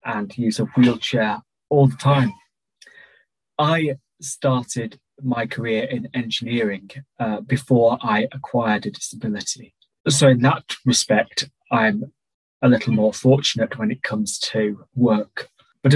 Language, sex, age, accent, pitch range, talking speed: English, male, 20-39, British, 115-140 Hz, 130 wpm